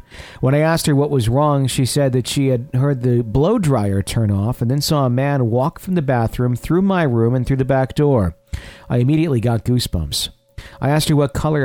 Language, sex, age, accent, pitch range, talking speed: English, male, 50-69, American, 110-135 Hz, 225 wpm